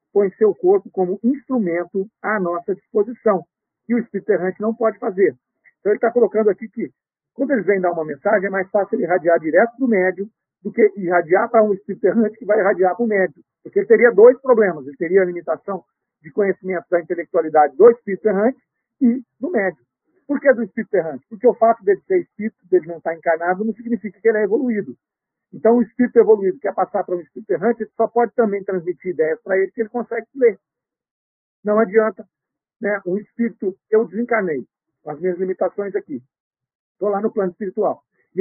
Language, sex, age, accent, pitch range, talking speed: Portuguese, male, 50-69, Brazilian, 185-235 Hz, 200 wpm